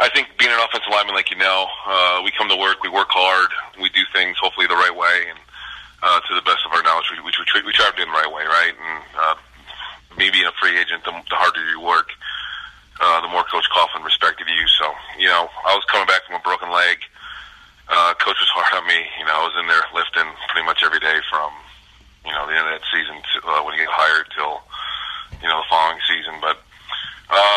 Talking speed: 250 wpm